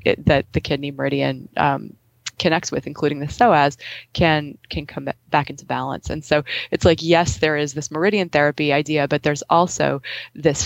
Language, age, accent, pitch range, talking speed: English, 20-39, American, 140-160 Hz, 175 wpm